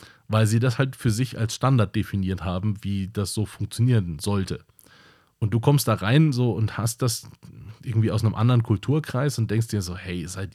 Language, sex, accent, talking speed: German, male, German, 200 wpm